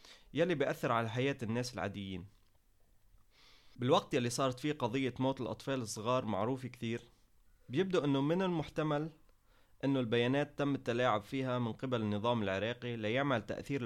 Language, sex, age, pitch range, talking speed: English, male, 20-39, 110-140 Hz, 135 wpm